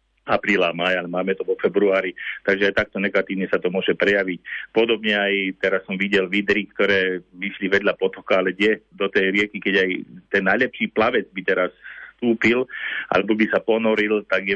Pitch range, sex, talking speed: 90-105 Hz, male, 175 wpm